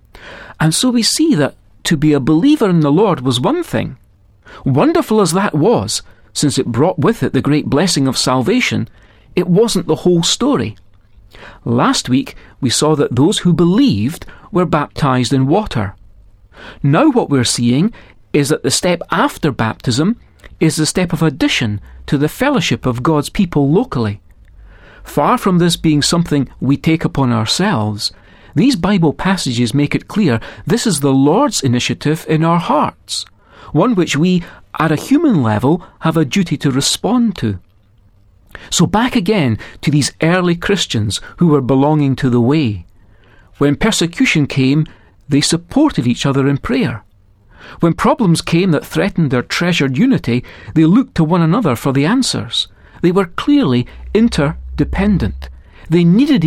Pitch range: 115-175 Hz